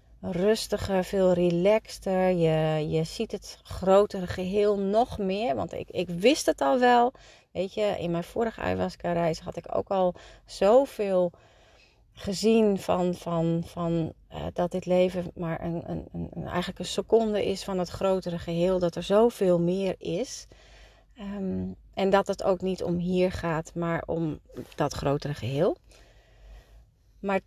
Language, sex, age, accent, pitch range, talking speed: Dutch, female, 30-49, Dutch, 170-215 Hz, 155 wpm